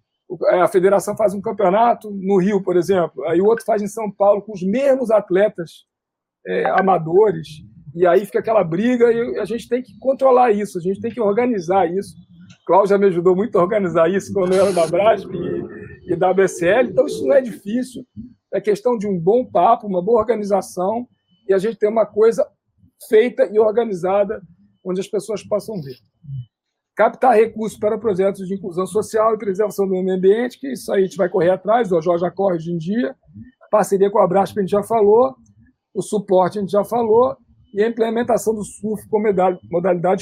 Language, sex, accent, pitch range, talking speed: Portuguese, male, Brazilian, 185-220 Hz, 200 wpm